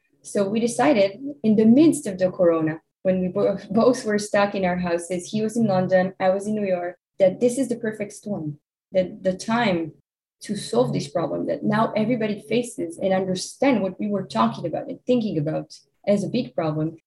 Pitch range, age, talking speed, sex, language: 165-210 Hz, 20-39, 200 wpm, female, English